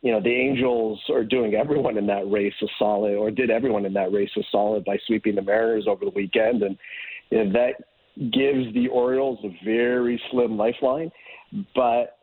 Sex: male